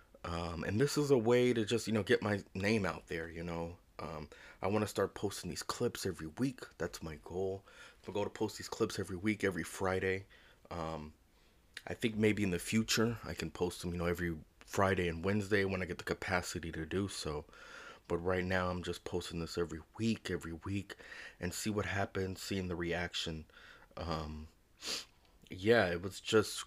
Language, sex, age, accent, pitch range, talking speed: English, male, 20-39, American, 85-100 Hz, 200 wpm